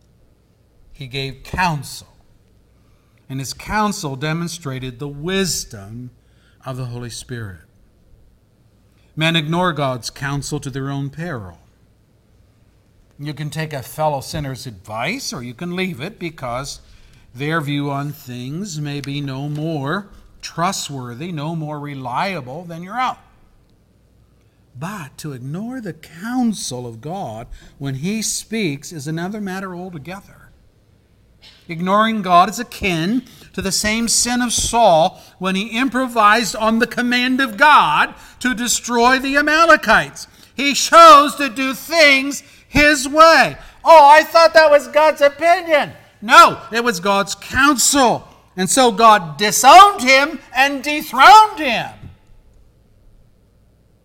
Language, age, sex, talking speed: English, 50-69, male, 125 wpm